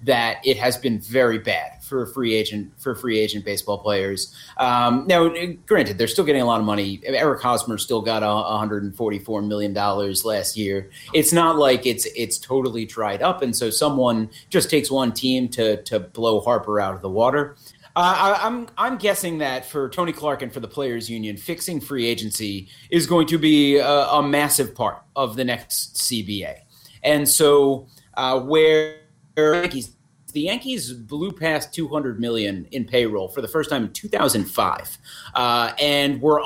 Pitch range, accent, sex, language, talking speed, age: 115-150 Hz, American, male, English, 185 wpm, 30-49